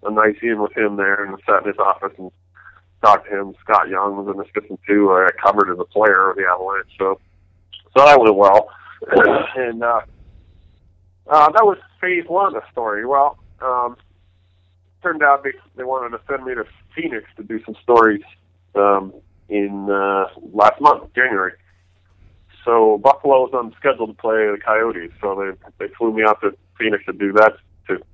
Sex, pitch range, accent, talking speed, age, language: male, 90-130 Hz, American, 190 wpm, 20-39, English